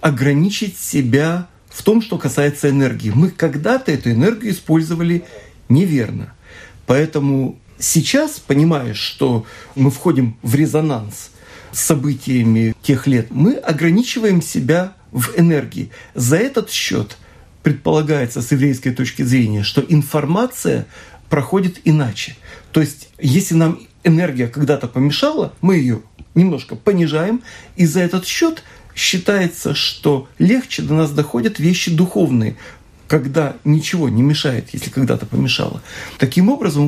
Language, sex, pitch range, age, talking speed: Russian, male, 135-185 Hz, 40-59, 120 wpm